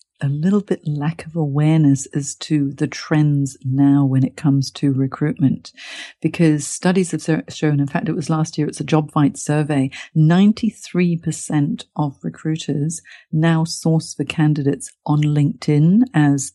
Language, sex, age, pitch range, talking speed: English, female, 50-69, 145-170 Hz, 150 wpm